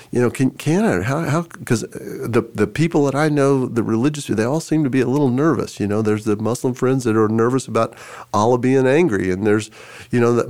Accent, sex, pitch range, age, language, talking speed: American, male, 110-130 Hz, 40-59, English, 240 wpm